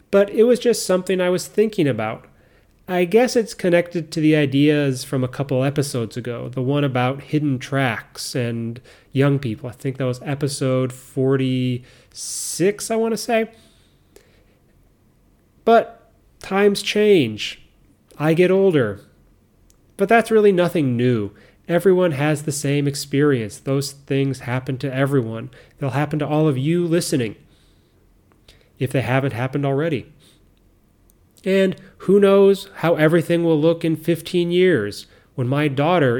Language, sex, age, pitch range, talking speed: English, male, 30-49, 130-175 Hz, 140 wpm